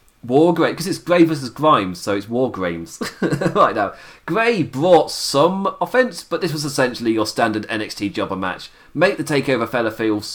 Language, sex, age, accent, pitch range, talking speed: English, male, 30-49, British, 105-150 Hz, 175 wpm